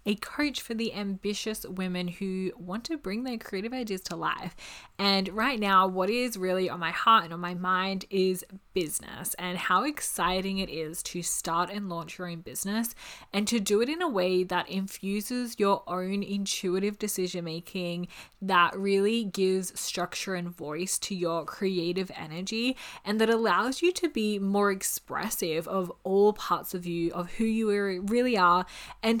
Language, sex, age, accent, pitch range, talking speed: English, female, 20-39, Australian, 180-215 Hz, 175 wpm